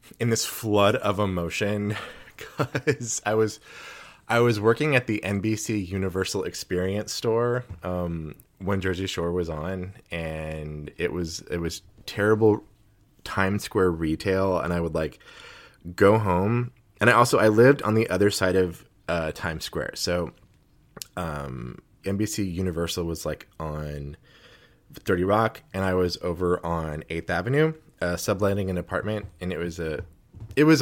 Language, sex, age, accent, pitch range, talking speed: English, male, 20-39, American, 85-110 Hz, 150 wpm